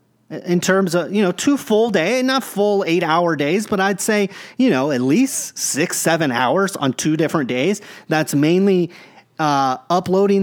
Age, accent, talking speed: 30-49, American, 180 wpm